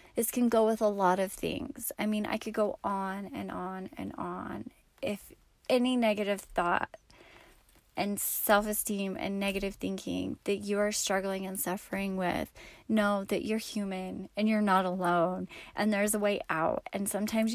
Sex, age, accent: female, 30-49, American